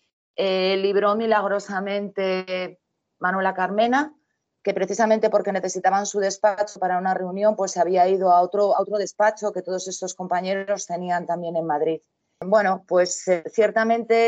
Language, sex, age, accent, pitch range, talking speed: Spanish, female, 30-49, Spanish, 180-205 Hz, 145 wpm